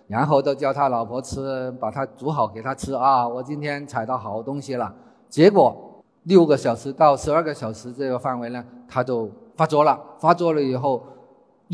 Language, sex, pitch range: Chinese, male, 125-165 Hz